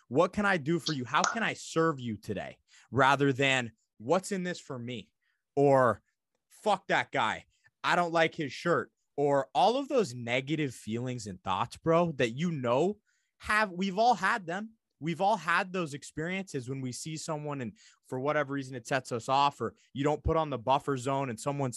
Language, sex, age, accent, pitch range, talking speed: English, male, 20-39, American, 105-145 Hz, 200 wpm